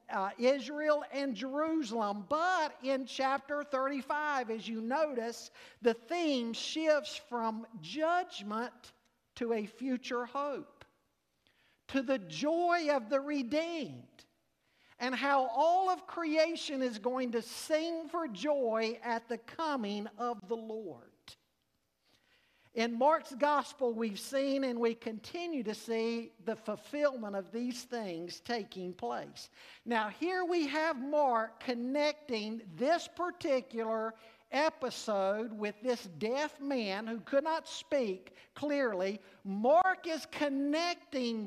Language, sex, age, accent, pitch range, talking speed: English, male, 50-69, American, 230-295 Hz, 115 wpm